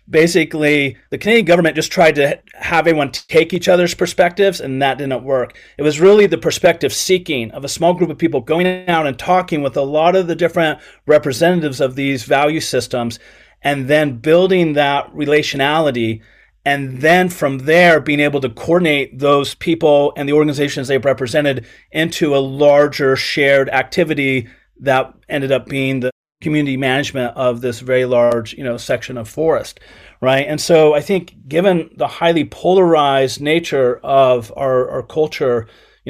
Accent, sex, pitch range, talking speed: American, male, 130-160 Hz, 165 wpm